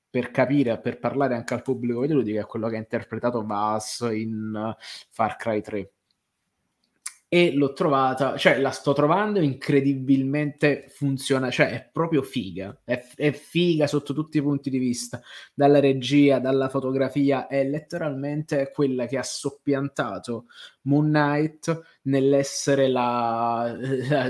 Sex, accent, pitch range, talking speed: male, native, 120-145 Hz, 135 wpm